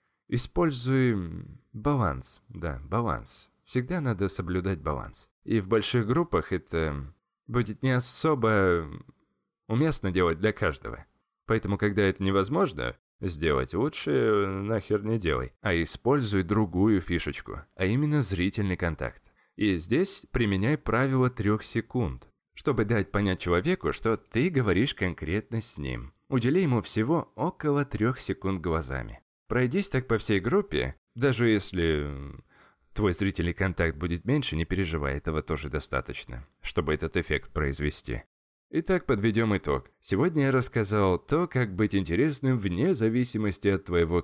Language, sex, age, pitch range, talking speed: Russian, male, 20-39, 85-120 Hz, 130 wpm